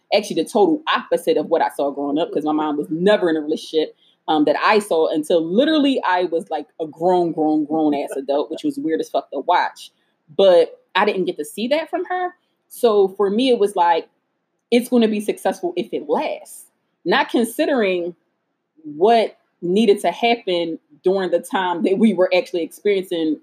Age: 30-49